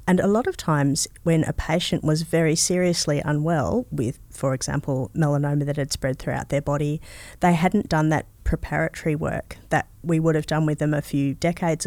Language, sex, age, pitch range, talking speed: English, female, 30-49, 150-175 Hz, 190 wpm